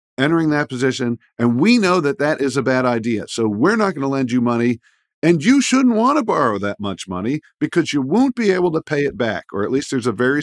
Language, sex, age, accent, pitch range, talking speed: English, male, 50-69, American, 115-170 Hz, 255 wpm